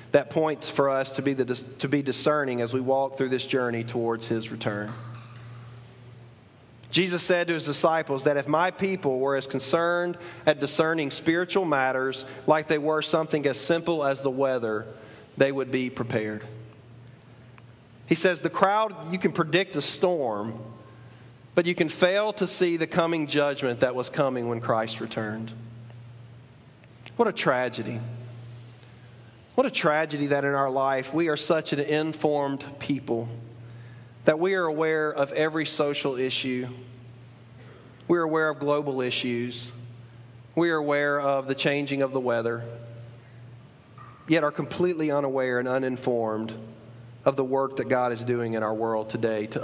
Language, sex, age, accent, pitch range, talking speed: English, male, 40-59, American, 120-150 Hz, 155 wpm